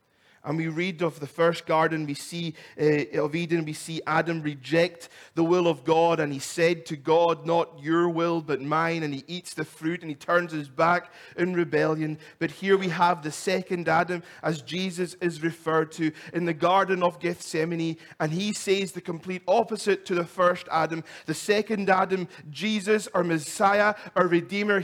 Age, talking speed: 30-49, 180 wpm